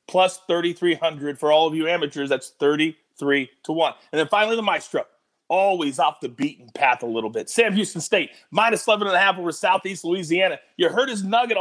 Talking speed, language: 185 wpm, English